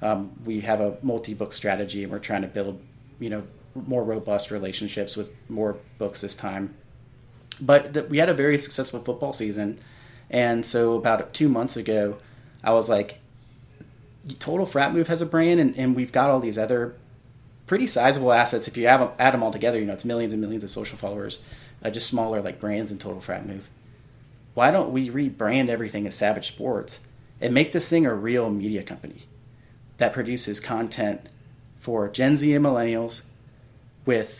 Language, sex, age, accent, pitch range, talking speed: English, male, 30-49, American, 105-125 Hz, 180 wpm